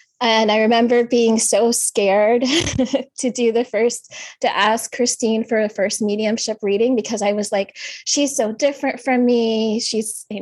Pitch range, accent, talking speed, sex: 195-230 Hz, American, 165 wpm, female